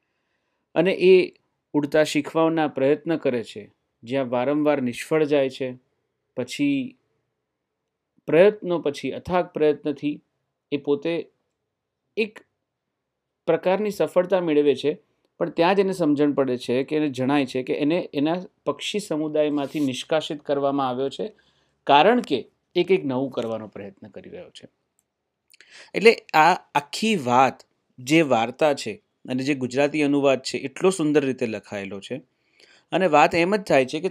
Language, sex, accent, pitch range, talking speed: Hindi, male, native, 135-190 Hz, 90 wpm